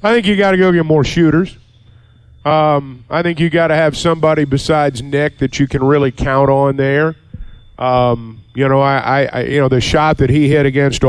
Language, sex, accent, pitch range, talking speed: English, male, American, 120-155 Hz, 215 wpm